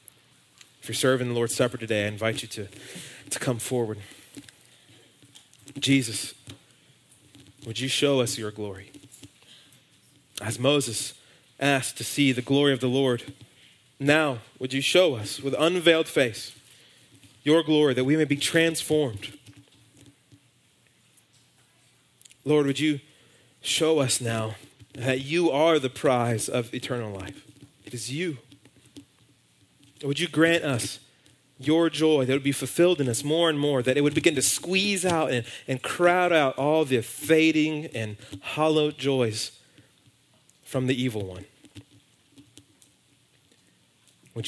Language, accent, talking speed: English, American, 135 wpm